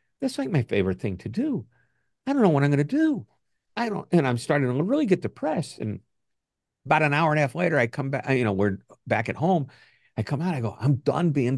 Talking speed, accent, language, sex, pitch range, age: 250 wpm, American, English, male, 100-140 Hz, 50-69